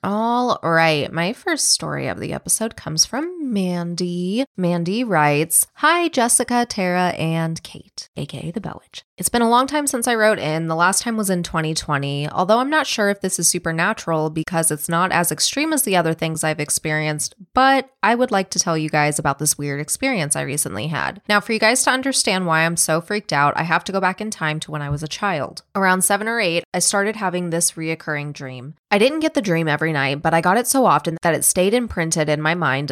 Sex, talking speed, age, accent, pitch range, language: female, 230 wpm, 20-39, American, 155-205 Hz, English